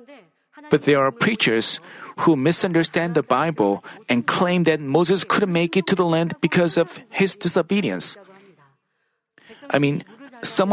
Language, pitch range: Korean, 160-215 Hz